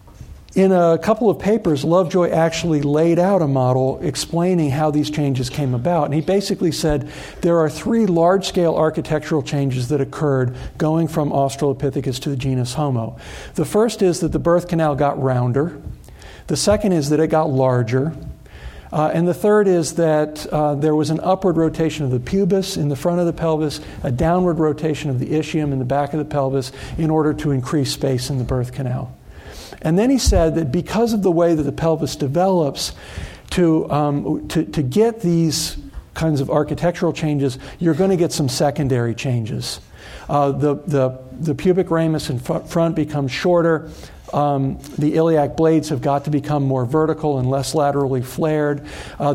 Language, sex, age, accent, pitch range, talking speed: English, male, 50-69, American, 135-160 Hz, 180 wpm